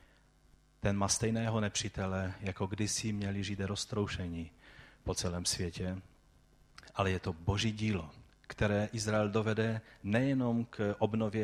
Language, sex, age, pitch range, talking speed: Czech, male, 30-49, 95-115 Hz, 120 wpm